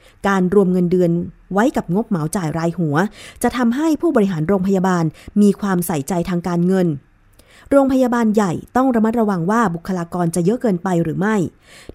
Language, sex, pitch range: Thai, female, 170-215 Hz